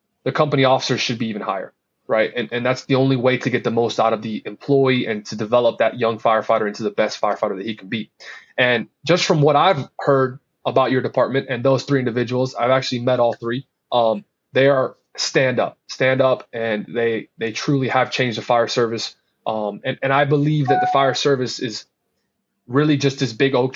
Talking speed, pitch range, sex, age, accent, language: 215 wpm, 115-140 Hz, male, 20-39, American, English